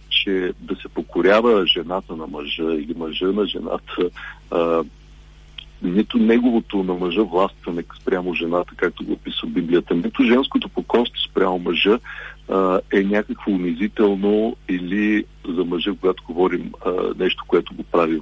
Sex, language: male, Bulgarian